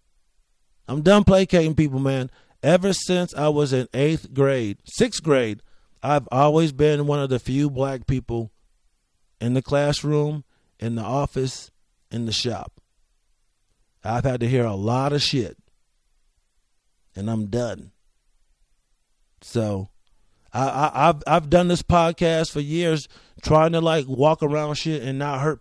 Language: English